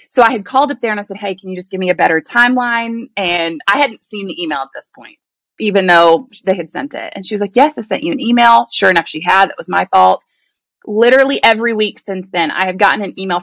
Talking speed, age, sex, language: 275 wpm, 20-39, female, English